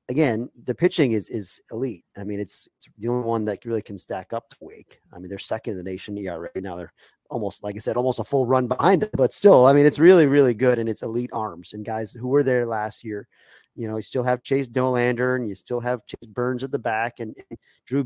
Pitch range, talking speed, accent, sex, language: 105-130 Hz, 265 wpm, American, male, English